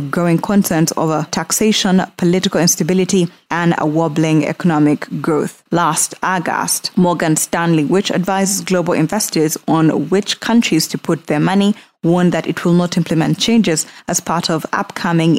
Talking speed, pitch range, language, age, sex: 145 wpm, 160-200 Hz, English, 20-39, female